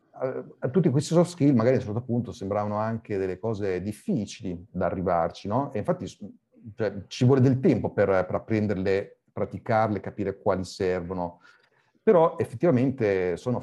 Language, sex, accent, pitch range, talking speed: Italian, male, native, 100-115 Hz, 155 wpm